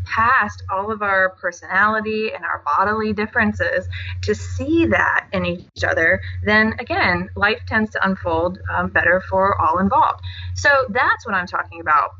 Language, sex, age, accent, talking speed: English, female, 30-49, American, 155 wpm